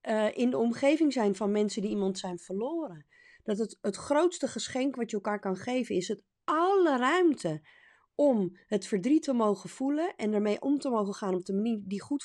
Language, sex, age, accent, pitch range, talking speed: Dutch, female, 30-49, Dutch, 210-290 Hz, 205 wpm